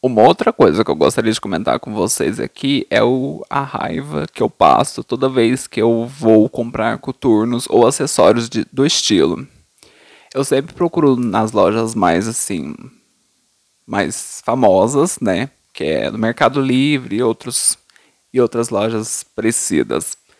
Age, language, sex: 20-39, Portuguese, male